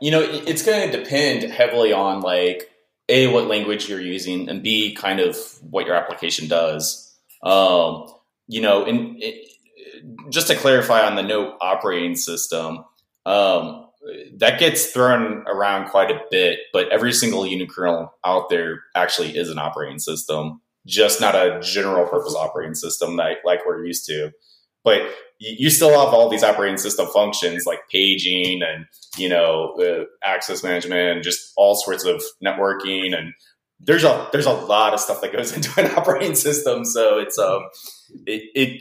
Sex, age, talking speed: male, 20-39, 160 wpm